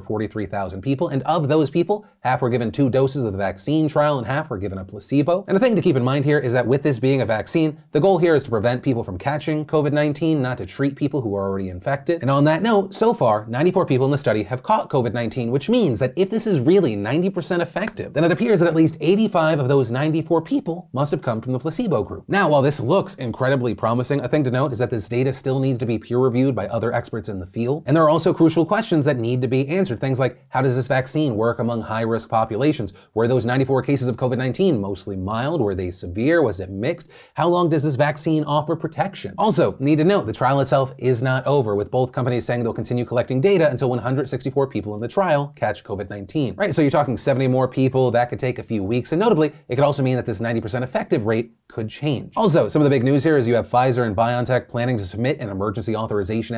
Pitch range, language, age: 115-155 Hz, English, 30-49